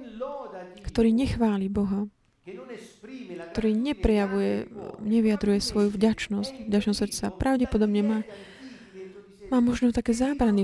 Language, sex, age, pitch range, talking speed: Slovak, female, 20-39, 195-225 Hz, 85 wpm